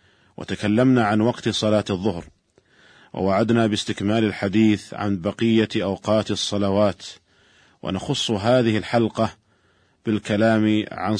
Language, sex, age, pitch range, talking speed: Arabic, male, 50-69, 105-120 Hz, 90 wpm